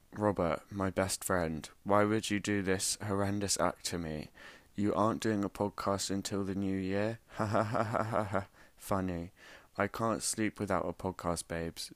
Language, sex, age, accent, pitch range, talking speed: English, male, 20-39, British, 85-95 Hz, 180 wpm